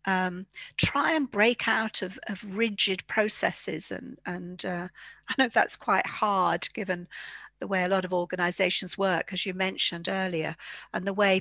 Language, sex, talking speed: English, female, 170 wpm